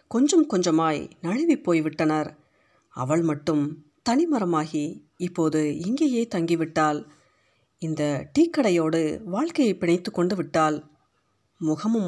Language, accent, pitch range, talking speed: Tamil, native, 155-195 Hz, 85 wpm